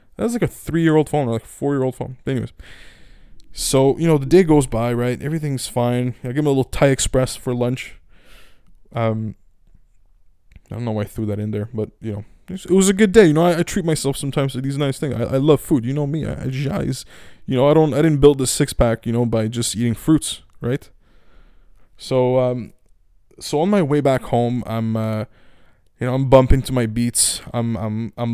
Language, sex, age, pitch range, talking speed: English, male, 20-39, 110-145 Hz, 230 wpm